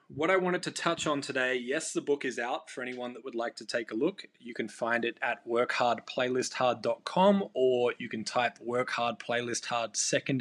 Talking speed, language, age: 210 wpm, English, 20-39